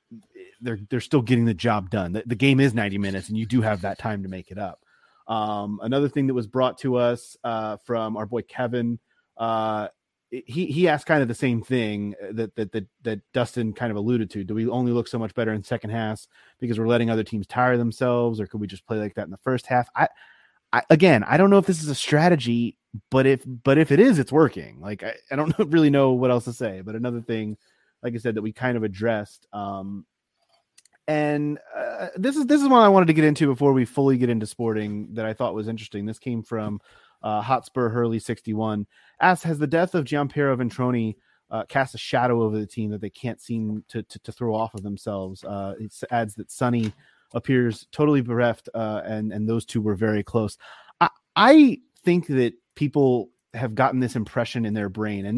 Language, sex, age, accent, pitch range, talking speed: English, male, 30-49, American, 110-130 Hz, 225 wpm